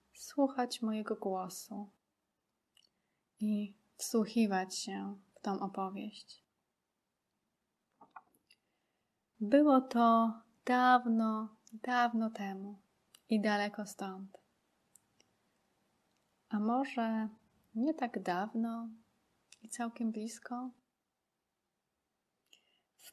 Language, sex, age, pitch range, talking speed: Polish, female, 20-39, 205-240 Hz, 65 wpm